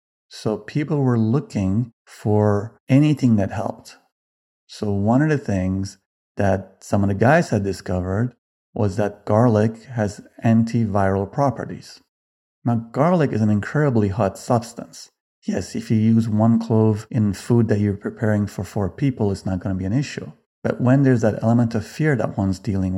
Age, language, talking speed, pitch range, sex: 40-59, English, 165 wpm, 100-125 Hz, male